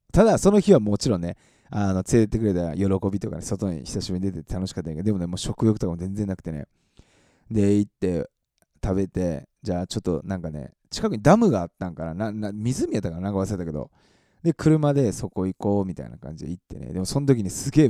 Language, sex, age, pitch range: Japanese, male, 20-39, 90-115 Hz